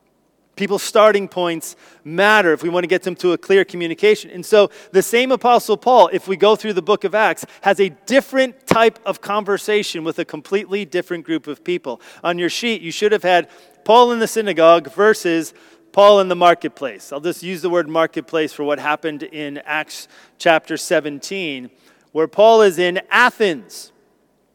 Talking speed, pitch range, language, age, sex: 185 wpm, 165-210 Hz, English, 30-49, male